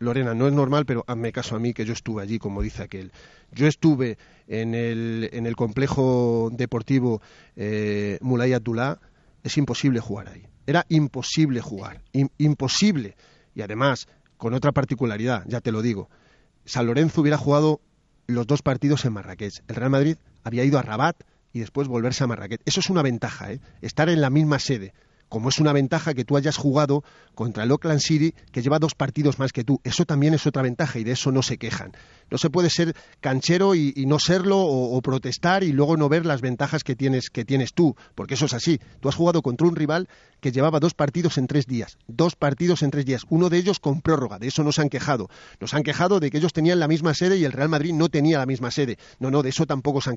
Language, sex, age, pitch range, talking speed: Spanish, male, 40-59, 120-155 Hz, 225 wpm